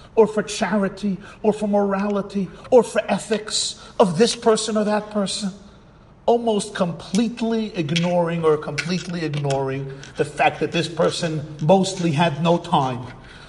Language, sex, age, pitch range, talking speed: English, male, 50-69, 145-195 Hz, 135 wpm